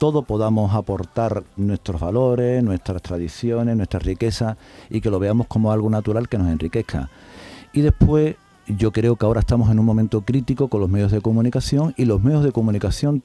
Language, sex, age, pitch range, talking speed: Spanish, male, 50-69, 105-130 Hz, 180 wpm